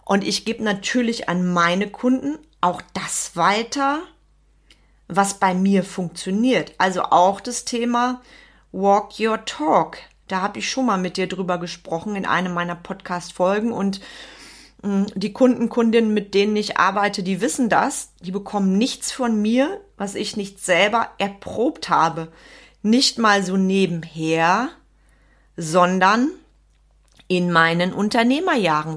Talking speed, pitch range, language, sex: 135 wpm, 185-230 Hz, German, female